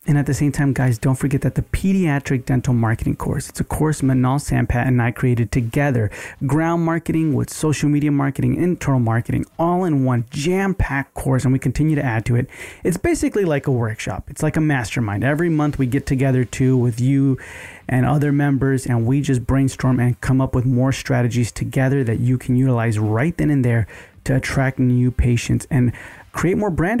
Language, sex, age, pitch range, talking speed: English, male, 30-49, 125-145 Hz, 200 wpm